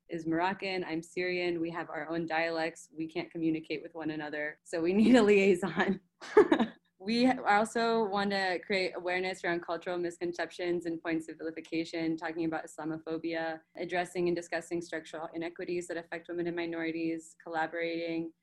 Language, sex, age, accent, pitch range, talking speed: English, female, 20-39, American, 160-190 Hz, 155 wpm